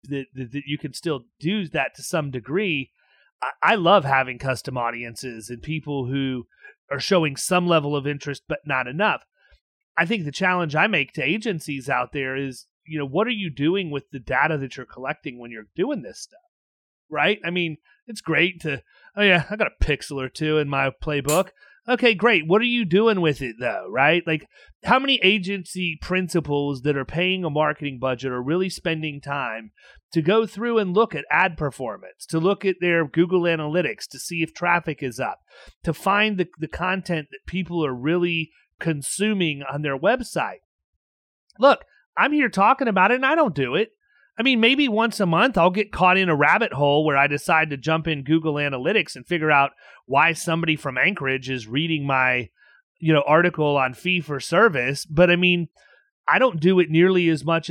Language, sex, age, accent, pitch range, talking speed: English, male, 30-49, American, 140-185 Hz, 195 wpm